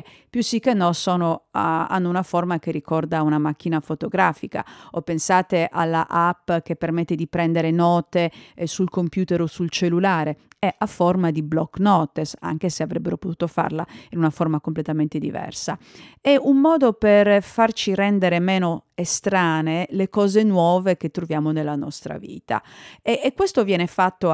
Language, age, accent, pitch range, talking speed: Italian, 40-59, native, 160-185 Hz, 165 wpm